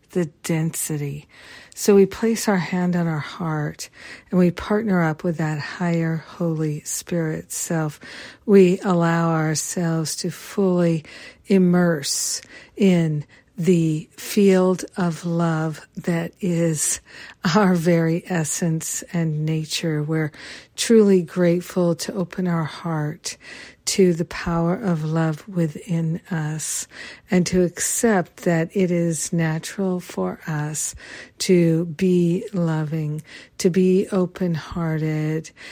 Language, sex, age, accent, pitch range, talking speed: English, female, 50-69, American, 160-185 Hz, 115 wpm